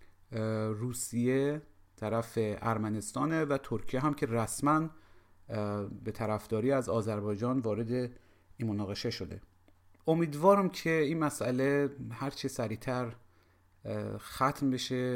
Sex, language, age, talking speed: male, Persian, 40-59, 100 wpm